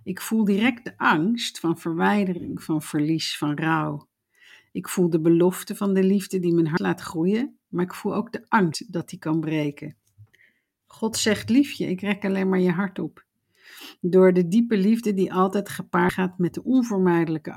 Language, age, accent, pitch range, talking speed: Dutch, 50-69, Dutch, 165-200 Hz, 185 wpm